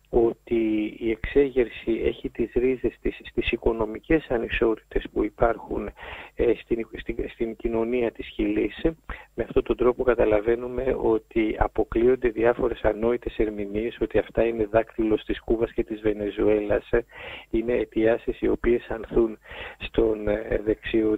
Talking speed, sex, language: 125 wpm, male, English